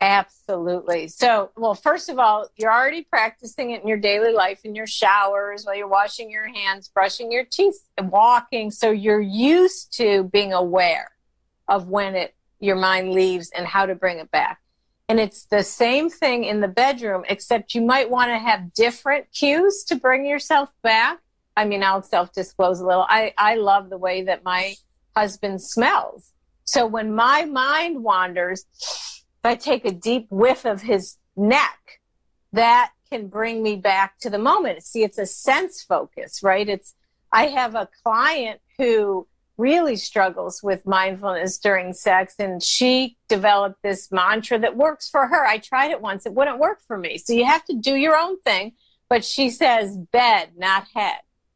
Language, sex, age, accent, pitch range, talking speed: English, female, 50-69, American, 195-255 Hz, 175 wpm